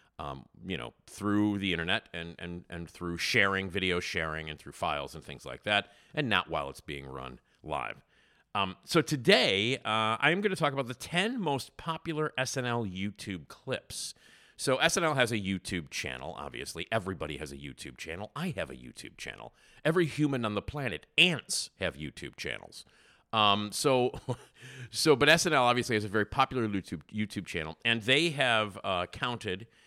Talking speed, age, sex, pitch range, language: 175 wpm, 50-69, male, 90-140 Hz, English